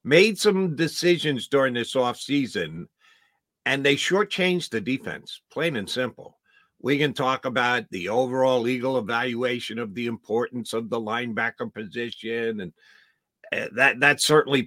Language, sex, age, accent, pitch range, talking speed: English, male, 50-69, American, 140-220 Hz, 135 wpm